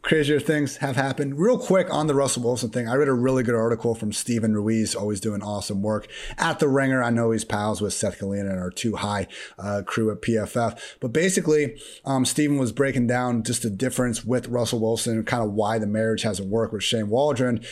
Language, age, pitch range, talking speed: English, 30-49, 115-145 Hz, 220 wpm